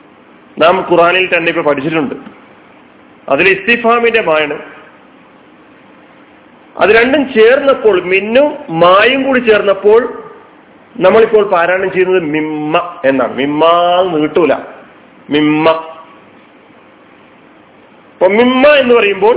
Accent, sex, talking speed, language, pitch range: native, male, 75 wpm, Malayalam, 160-220 Hz